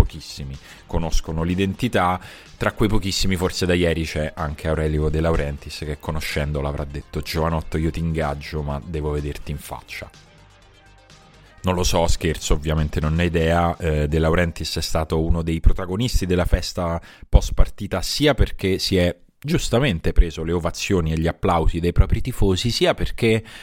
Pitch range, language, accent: 80-110 Hz, Italian, native